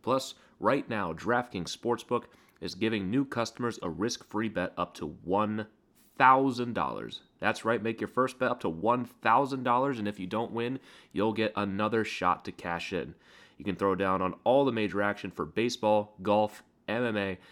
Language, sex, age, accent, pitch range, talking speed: English, male, 30-49, American, 95-120 Hz, 170 wpm